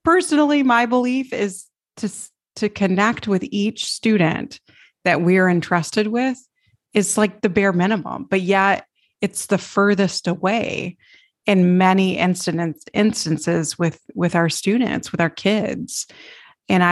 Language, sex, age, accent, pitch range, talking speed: English, female, 30-49, American, 180-220 Hz, 135 wpm